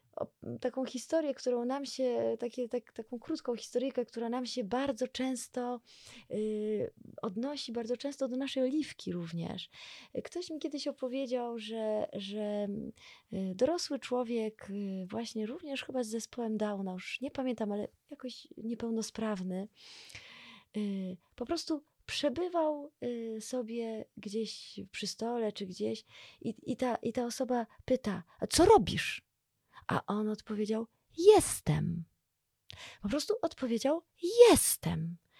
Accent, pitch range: native, 220-310 Hz